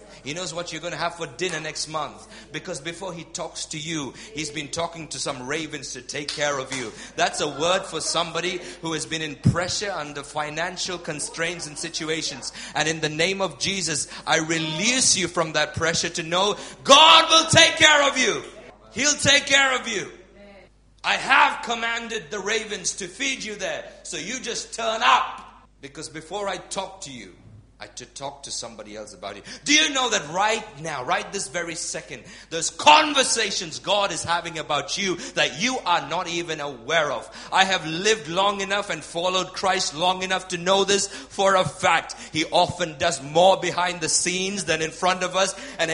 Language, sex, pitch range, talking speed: English, male, 160-200 Hz, 195 wpm